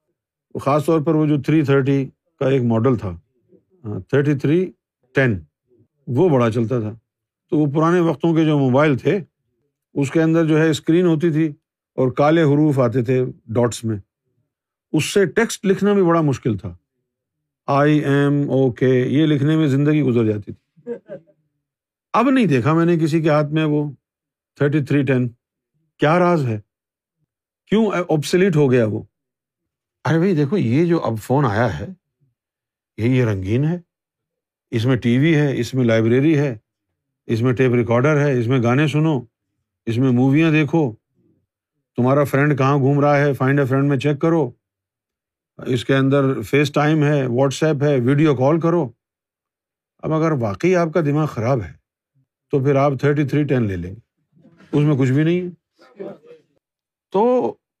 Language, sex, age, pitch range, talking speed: Urdu, male, 50-69, 125-155 Hz, 165 wpm